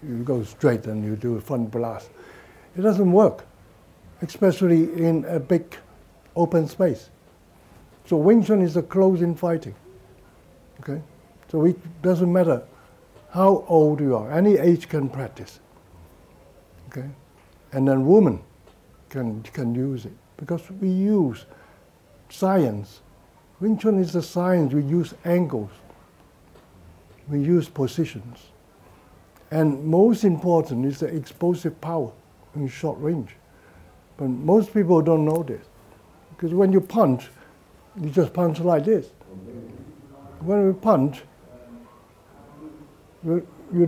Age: 60-79